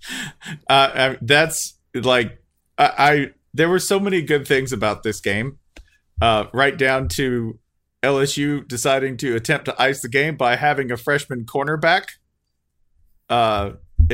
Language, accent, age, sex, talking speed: English, American, 40-59, male, 135 wpm